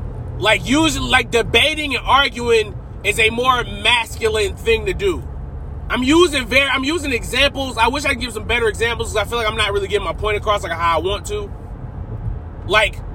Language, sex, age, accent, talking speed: English, male, 20-39, American, 200 wpm